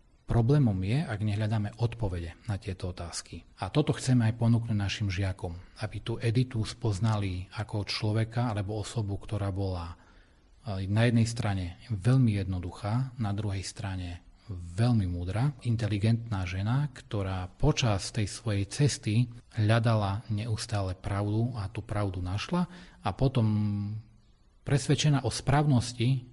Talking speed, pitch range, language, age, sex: 125 wpm, 100-115 Hz, Slovak, 30-49, male